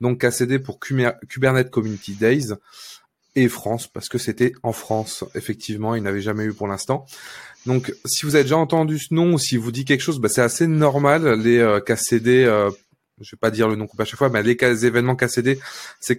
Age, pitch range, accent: 20-39, 110-130 Hz, French